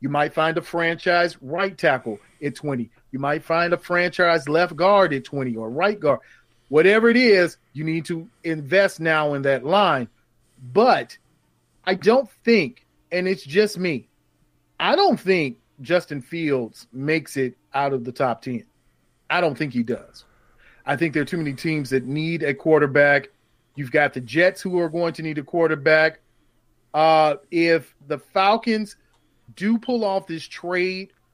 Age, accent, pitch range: 40-59, American, 135-175 Hz